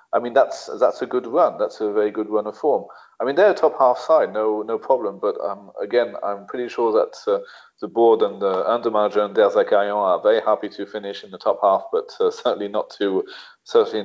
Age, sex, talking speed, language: 30-49, male, 240 wpm, English